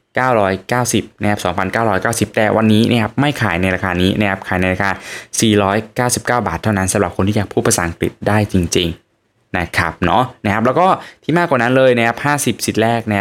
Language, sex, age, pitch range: Thai, male, 10-29, 100-120 Hz